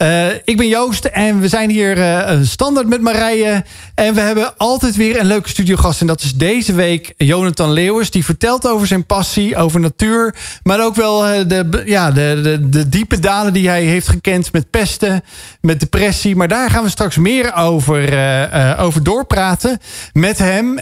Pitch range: 160-210 Hz